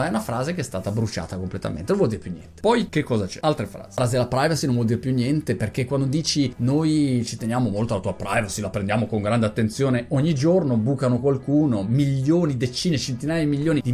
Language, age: Italian, 30-49